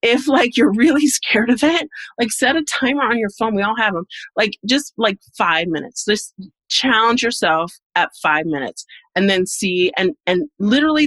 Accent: American